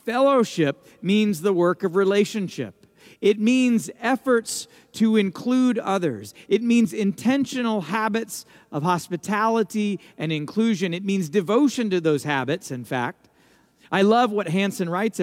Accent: American